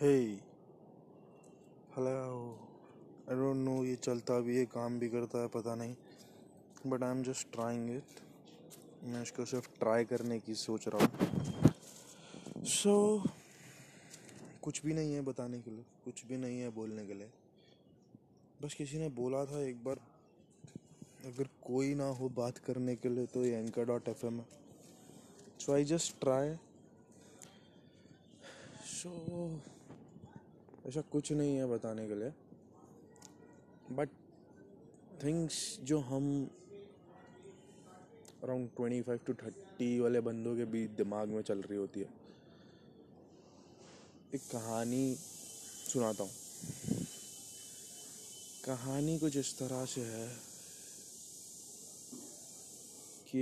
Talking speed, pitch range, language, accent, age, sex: 120 wpm, 120-140 Hz, Hindi, native, 20-39, male